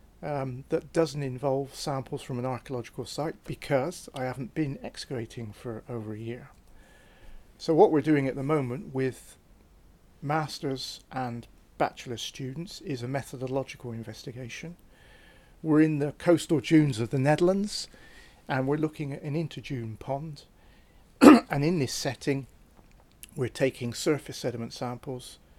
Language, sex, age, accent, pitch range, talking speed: English, male, 50-69, British, 115-145 Hz, 135 wpm